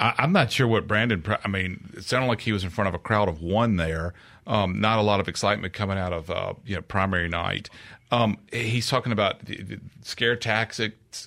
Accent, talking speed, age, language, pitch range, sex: American, 225 wpm, 40-59, English, 95-120 Hz, male